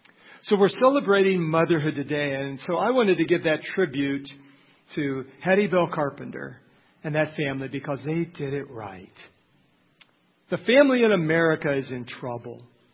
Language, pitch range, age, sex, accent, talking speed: English, 145-195 Hz, 50-69, male, American, 150 wpm